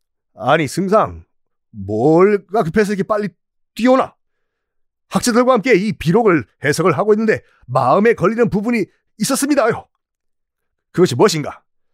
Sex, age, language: male, 40-59, Korean